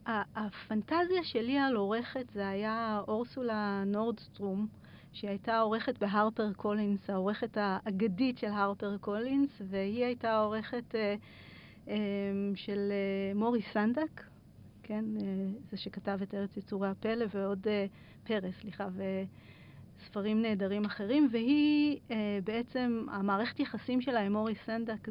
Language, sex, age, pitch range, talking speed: Hebrew, female, 40-59, 200-235 Hz, 105 wpm